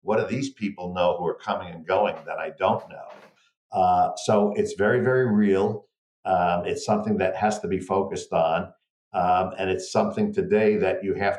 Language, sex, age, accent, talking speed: English, male, 50-69, American, 195 wpm